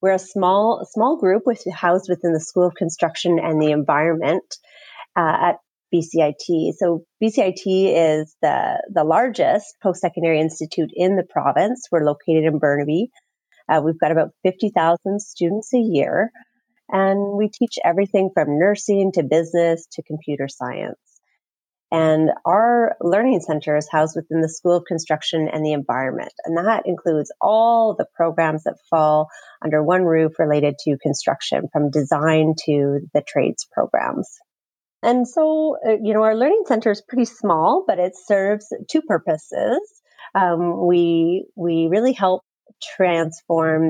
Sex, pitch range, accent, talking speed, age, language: female, 160-200 Hz, American, 145 wpm, 30-49, English